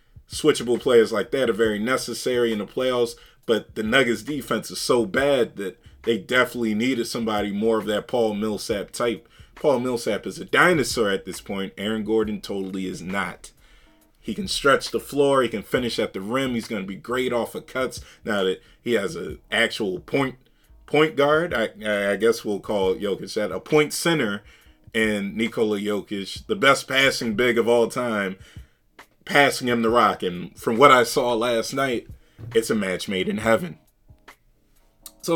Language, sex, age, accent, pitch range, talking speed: English, male, 30-49, American, 105-125 Hz, 180 wpm